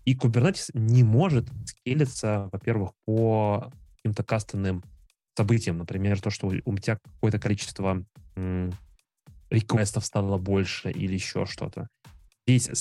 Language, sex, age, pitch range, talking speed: Russian, male, 20-39, 95-120 Hz, 115 wpm